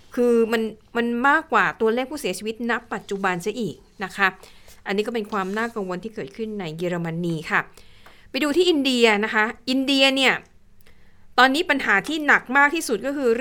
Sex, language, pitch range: female, Thai, 200-245 Hz